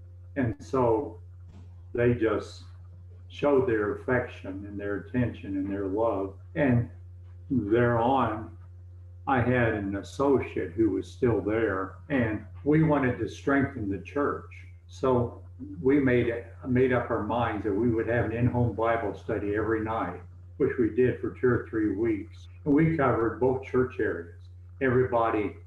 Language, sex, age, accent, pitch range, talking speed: English, male, 60-79, American, 90-120 Hz, 150 wpm